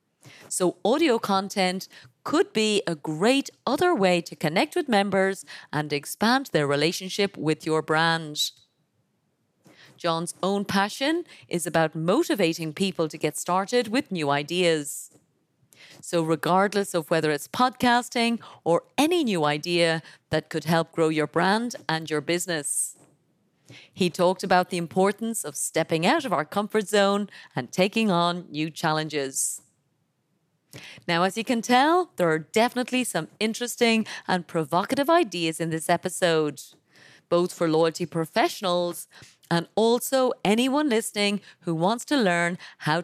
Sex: female